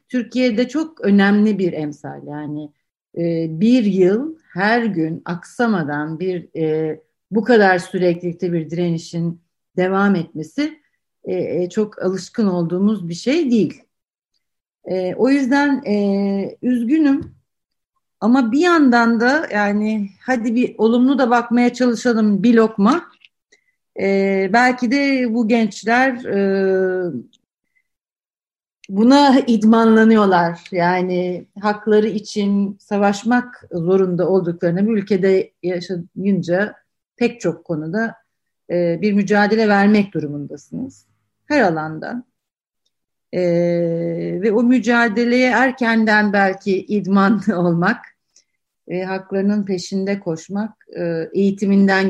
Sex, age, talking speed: female, 50-69, 100 wpm